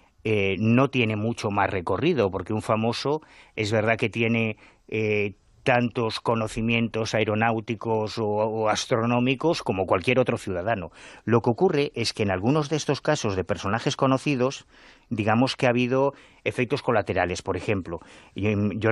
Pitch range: 105-125 Hz